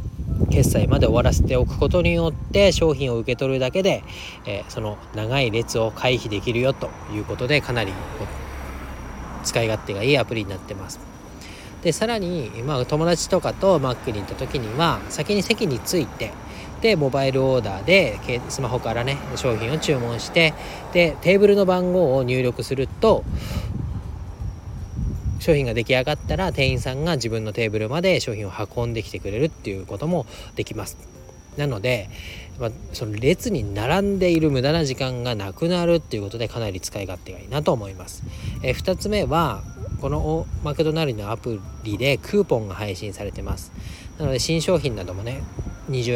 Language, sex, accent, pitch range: Japanese, male, native, 105-155 Hz